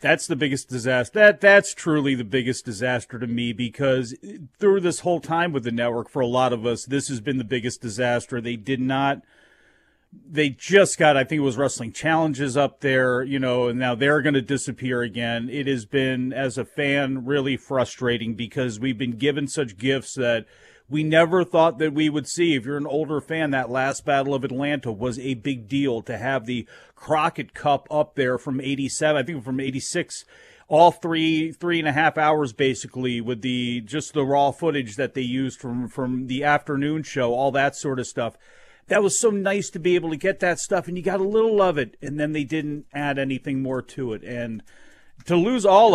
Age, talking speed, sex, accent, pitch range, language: 40-59, 210 wpm, male, American, 130-155 Hz, English